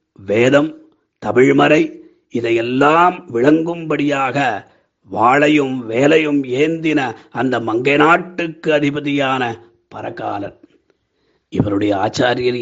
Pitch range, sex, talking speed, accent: 135-160 Hz, male, 60 wpm, native